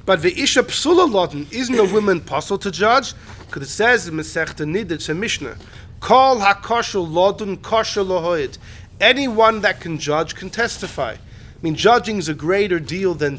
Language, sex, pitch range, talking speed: English, male, 160-215 Hz, 145 wpm